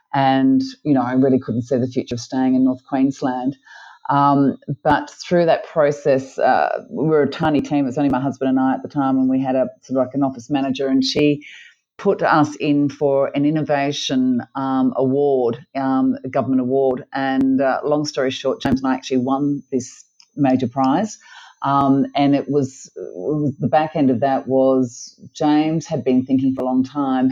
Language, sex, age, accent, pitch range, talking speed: English, female, 40-59, Australian, 130-155 Hz, 200 wpm